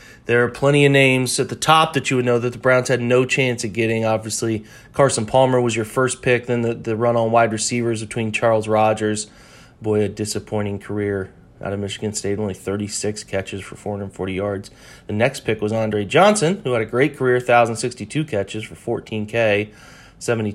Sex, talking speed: male, 195 wpm